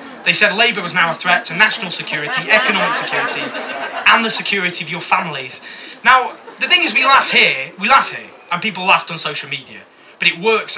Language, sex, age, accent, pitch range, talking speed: English, male, 20-39, British, 180-225 Hz, 205 wpm